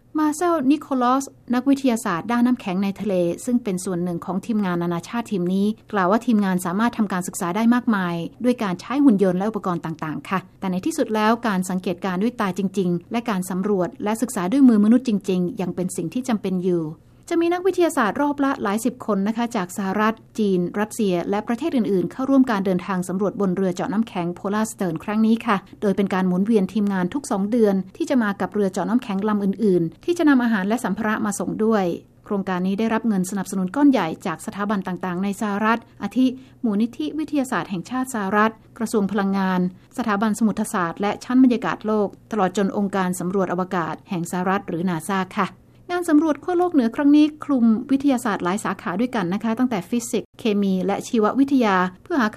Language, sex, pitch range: Thai, female, 185-240 Hz